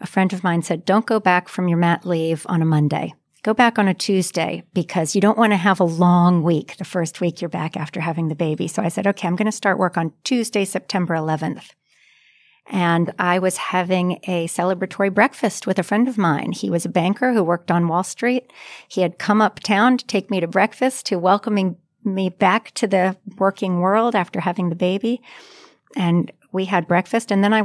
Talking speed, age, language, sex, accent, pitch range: 215 wpm, 40-59, English, female, American, 170-205 Hz